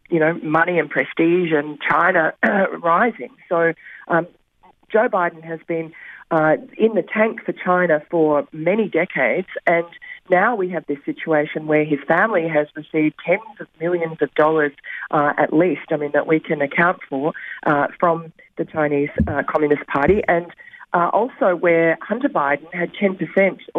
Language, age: English, 40-59